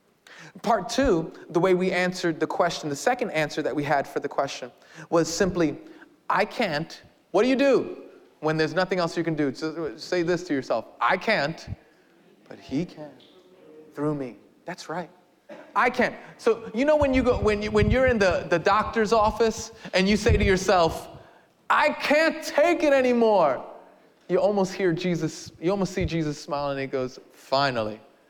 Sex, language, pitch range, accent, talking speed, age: male, English, 145-230 Hz, American, 180 wpm, 30-49